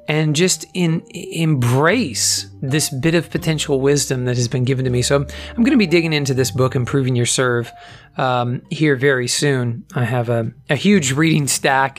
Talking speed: 190 wpm